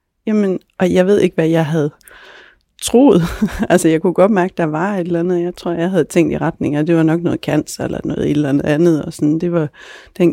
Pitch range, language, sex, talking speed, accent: 170-200 Hz, Danish, female, 245 wpm, native